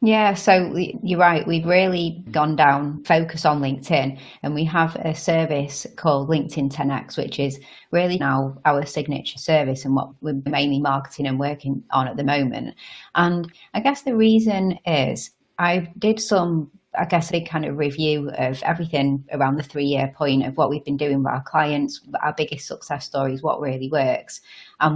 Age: 30-49